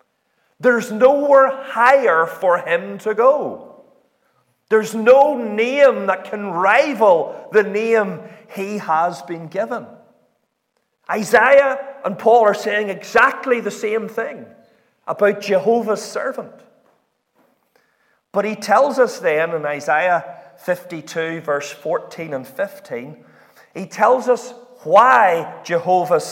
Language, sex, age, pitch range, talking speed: English, male, 40-59, 170-260 Hz, 110 wpm